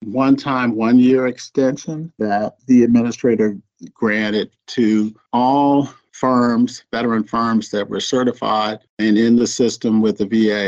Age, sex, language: 50-69, male, English